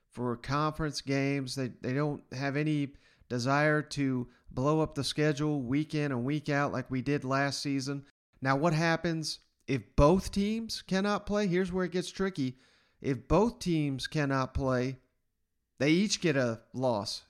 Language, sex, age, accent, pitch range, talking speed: English, male, 40-59, American, 135-170 Hz, 165 wpm